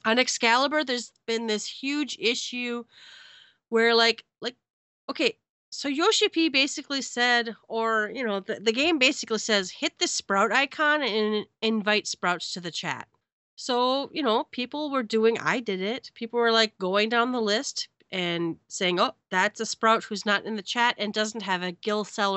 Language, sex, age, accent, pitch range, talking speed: English, female, 30-49, American, 185-260 Hz, 180 wpm